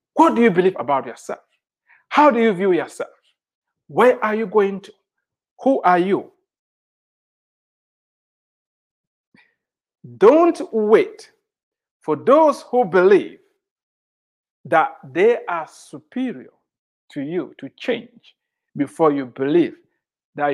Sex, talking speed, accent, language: male, 110 wpm, Nigerian, English